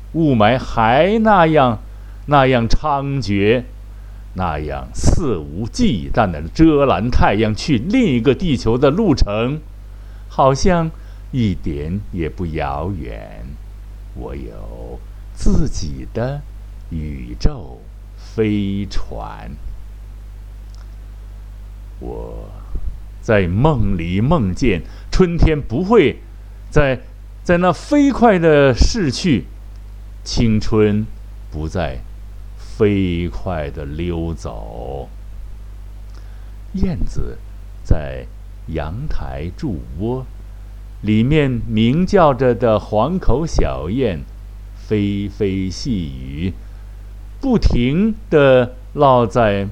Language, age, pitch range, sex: Chinese, 60-79, 100-115 Hz, male